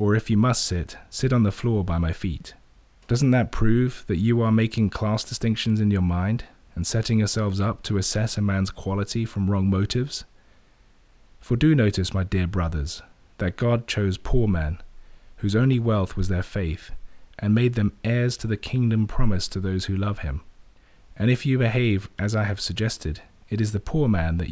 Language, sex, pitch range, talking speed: English, male, 95-115 Hz, 195 wpm